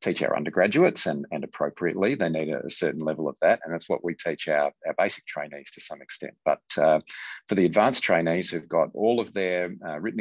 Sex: male